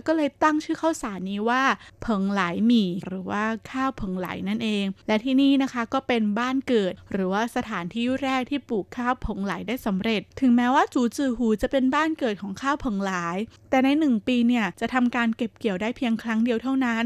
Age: 20-39